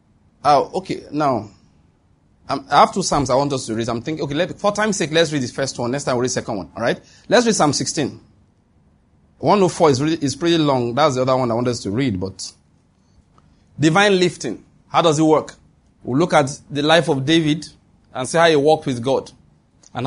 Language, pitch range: English, 140-180 Hz